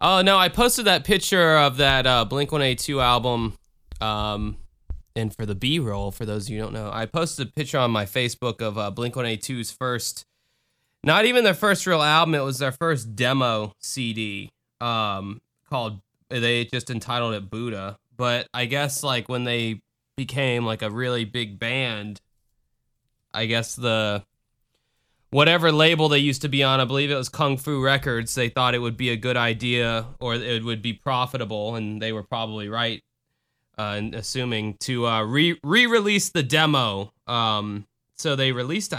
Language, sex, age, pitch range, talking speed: English, male, 20-39, 115-150 Hz, 170 wpm